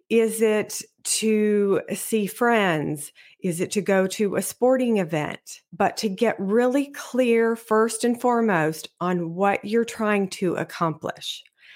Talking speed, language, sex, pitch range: 140 wpm, English, female, 175-220 Hz